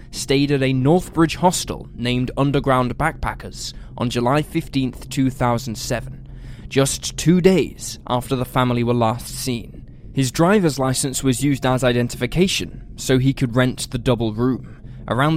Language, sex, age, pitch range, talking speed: English, male, 10-29, 125-155 Hz, 140 wpm